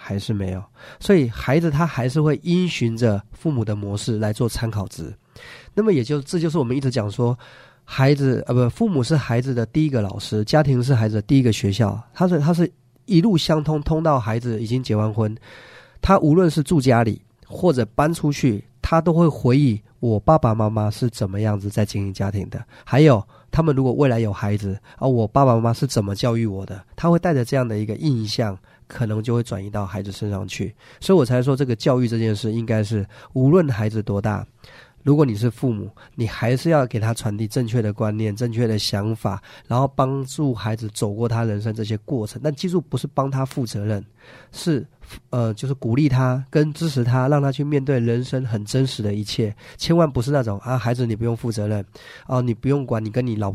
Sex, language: male, Chinese